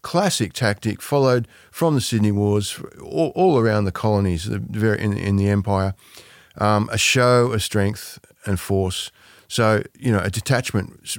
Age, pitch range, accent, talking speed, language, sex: 50-69, 95-115 Hz, Australian, 160 wpm, English, male